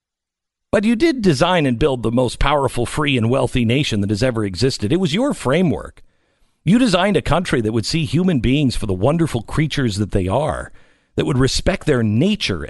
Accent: American